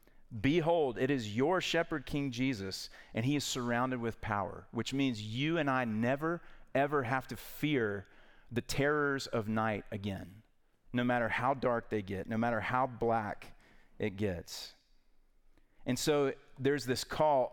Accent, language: American, English